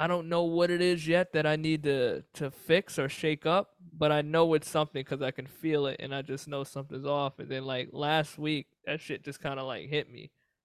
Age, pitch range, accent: 20-39, 145-165 Hz, American